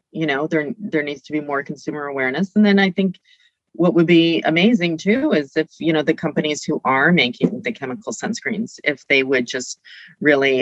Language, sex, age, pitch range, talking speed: English, female, 30-49, 145-175 Hz, 205 wpm